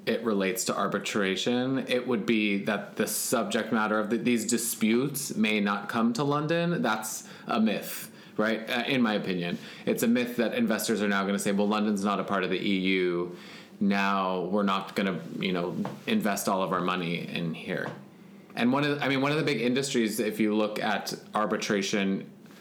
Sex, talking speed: male, 200 wpm